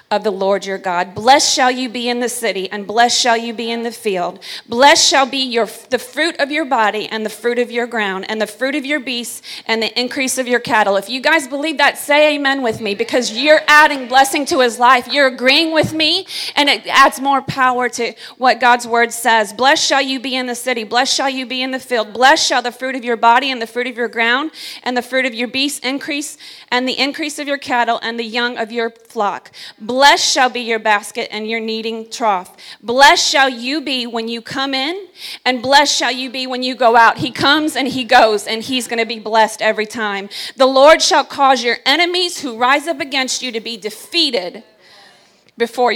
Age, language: 40-59, English